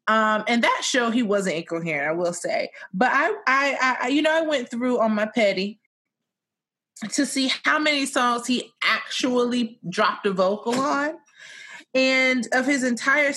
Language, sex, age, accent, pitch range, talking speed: English, female, 20-39, American, 195-245 Hz, 165 wpm